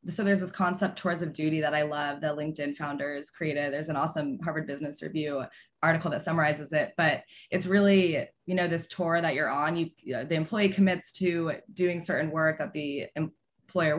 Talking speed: 200 wpm